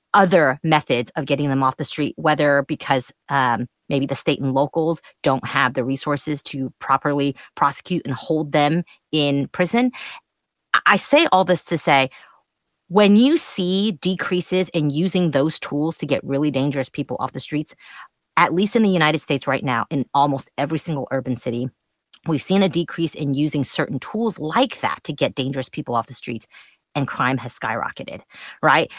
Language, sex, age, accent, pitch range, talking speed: English, female, 30-49, American, 140-180 Hz, 180 wpm